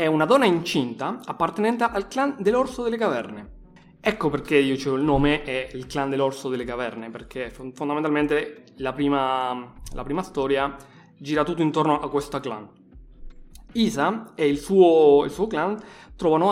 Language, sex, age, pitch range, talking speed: Italian, male, 20-39, 135-180 Hz, 160 wpm